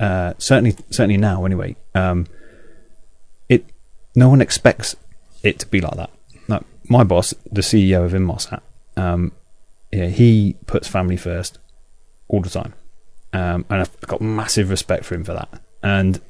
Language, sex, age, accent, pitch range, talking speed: English, male, 30-49, British, 90-110 Hz, 155 wpm